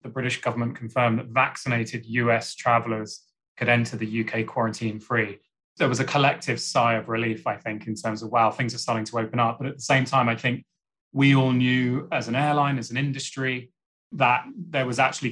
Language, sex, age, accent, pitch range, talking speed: English, male, 20-39, British, 115-140 Hz, 205 wpm